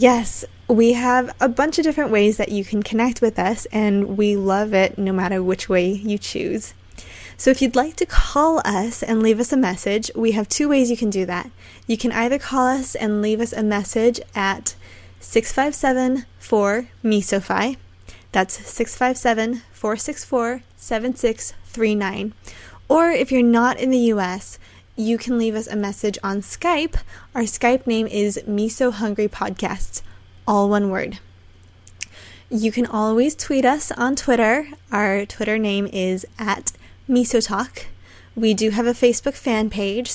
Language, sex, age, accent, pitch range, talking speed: English, female, 20-39, American, 195-245 Hz, 155 wpm